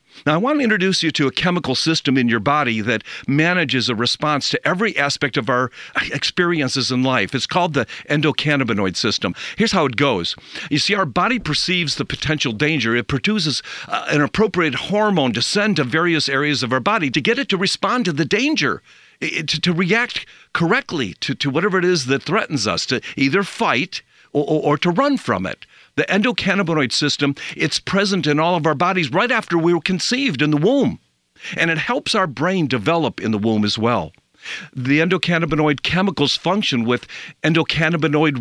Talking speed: 190 wpm